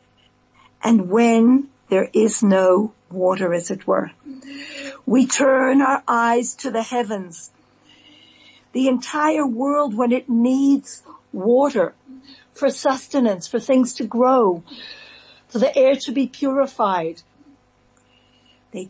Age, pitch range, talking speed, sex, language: 60-79, 205-265 Hz, 115 wpm, female, English